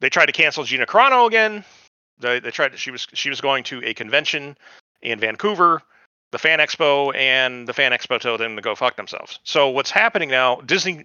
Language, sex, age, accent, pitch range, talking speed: English, male, 40-59, American, 120-160 Hz, 210 wpm